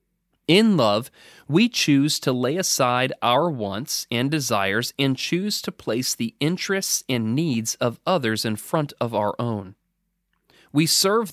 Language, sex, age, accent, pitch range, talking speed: English, male, 30-49, American, 115-175 Hz, 150 wpm